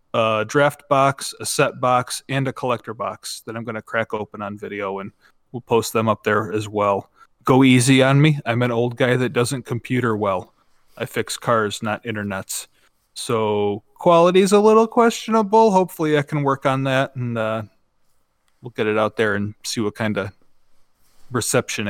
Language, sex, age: English, male, 30-49